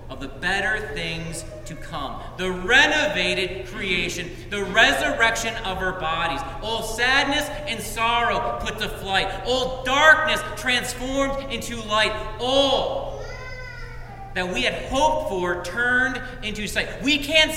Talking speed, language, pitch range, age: 125 wpm, English, 165-265 Hz, 40-59